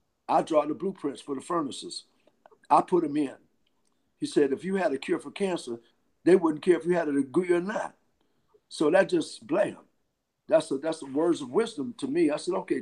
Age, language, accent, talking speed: 50-69, English, American, 210 wpm